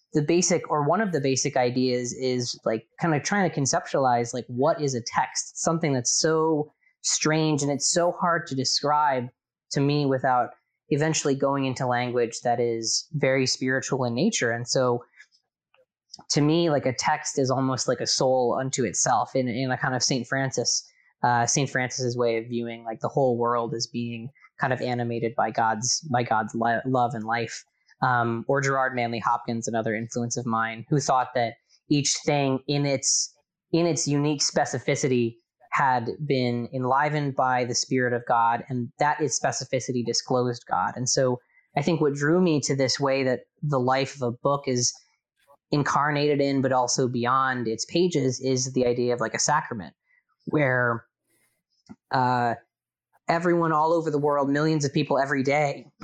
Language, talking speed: English, 175 wpm